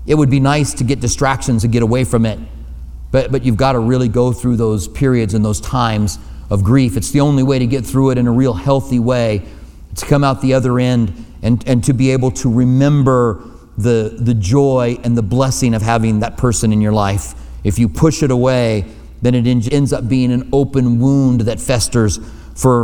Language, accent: English, American